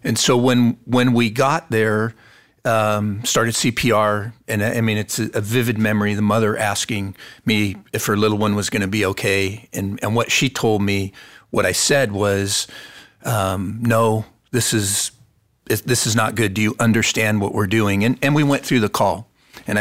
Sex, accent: male, American